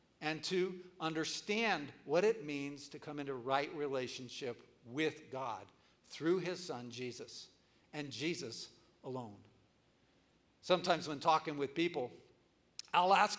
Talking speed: 120 wpm